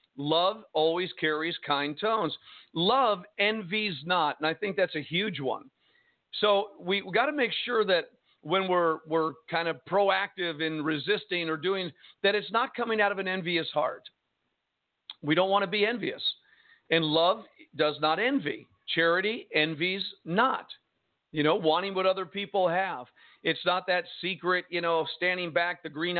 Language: English